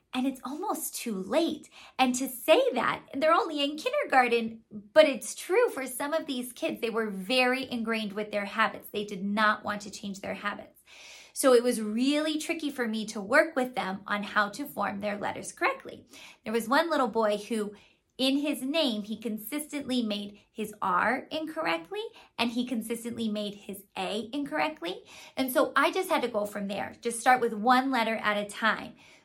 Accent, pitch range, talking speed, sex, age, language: American, 210-280 Hz, 190 wpm, female, 20-39, English